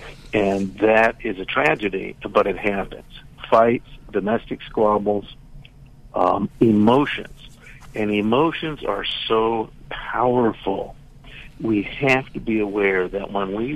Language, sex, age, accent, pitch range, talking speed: English, male, 60-79, American, 105-130 Hz, 115 wpm